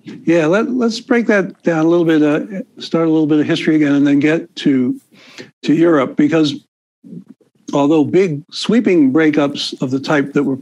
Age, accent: 60-79, American